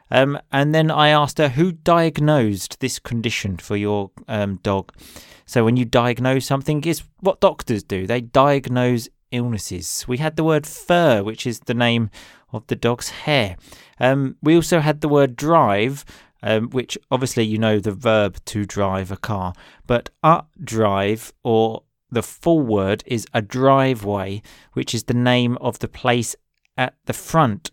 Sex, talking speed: male, 165 wpm